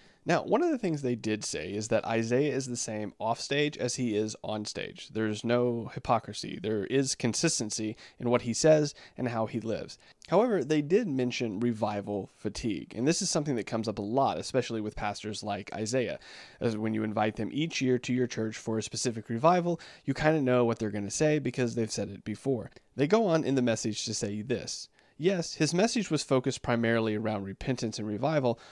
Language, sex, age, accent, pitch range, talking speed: English, male, 30-49, American, 110-140 Hz, 210 wpm